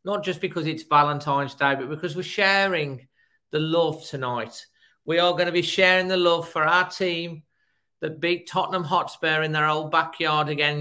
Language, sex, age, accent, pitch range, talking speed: English, male, 40-59, British, 145-180 Hz, 185 wpm